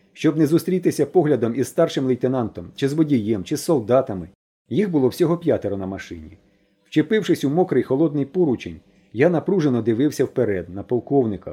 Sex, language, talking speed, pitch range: male, Ukrainian, 155 wpm, 110-160 Hz